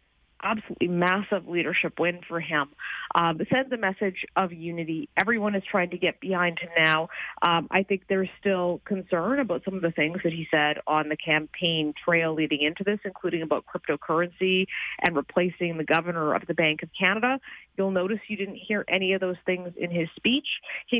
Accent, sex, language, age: American, female, English, 30-49